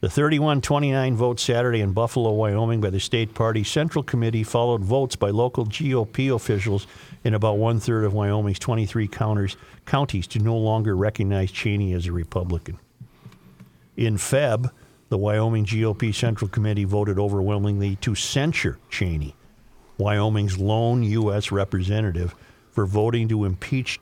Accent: American